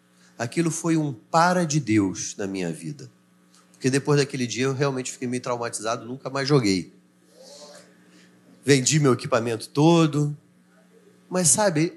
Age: 40-59